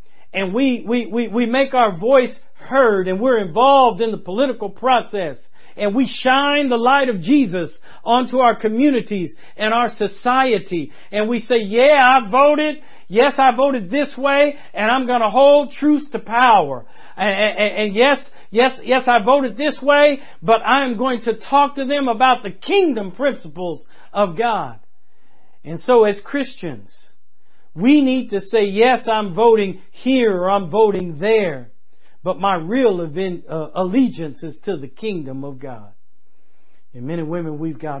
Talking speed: 165 wpm